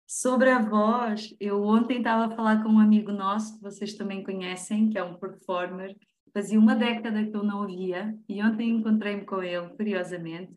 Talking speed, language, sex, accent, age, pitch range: 185 wpm, Portuguese, female, Brazilian, 20-39, 200-230 Hz